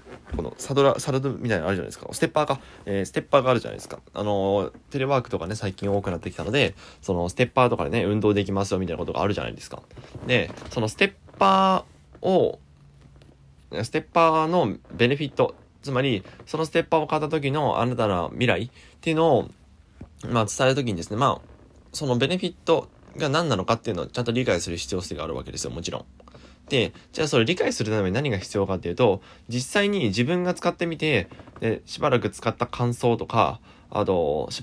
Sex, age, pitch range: male, 20-39, 95-135 Hz